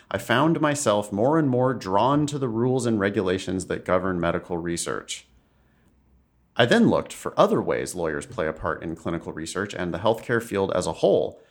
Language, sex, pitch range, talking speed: English, male, 90-125 Hz, 190 wpm